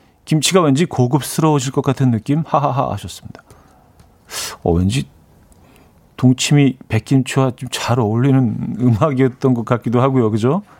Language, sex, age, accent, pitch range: Korean, male, 40-59, native, 110-155 Hz